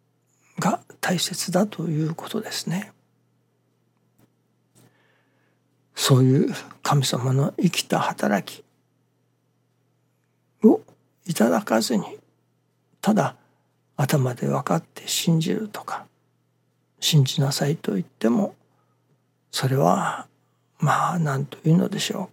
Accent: native